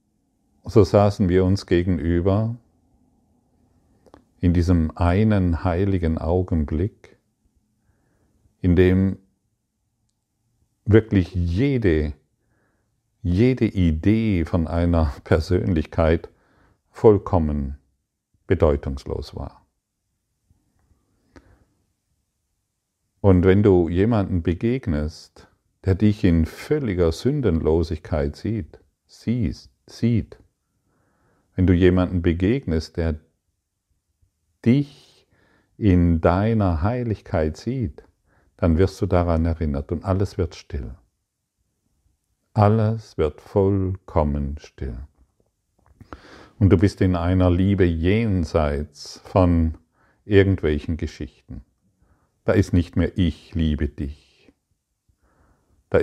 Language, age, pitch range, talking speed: German, 50-69, 80-100 Hz, 80 wpm